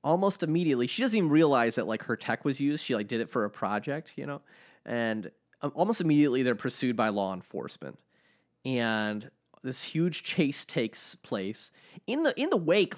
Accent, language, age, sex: American, English, 30-49, male